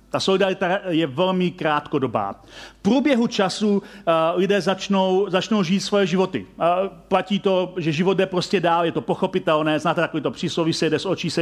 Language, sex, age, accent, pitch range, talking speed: Czech, male, 40-59, native, 145-190 Hz, 185 wpm